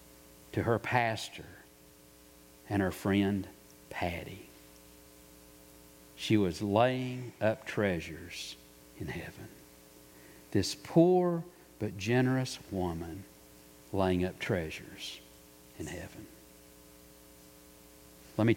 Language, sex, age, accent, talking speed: English, male, 60-79, American, 85 wpm